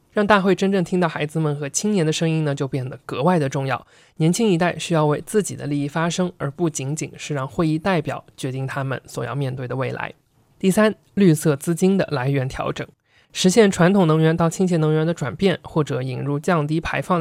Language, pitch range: Chinese, 145-185 Hz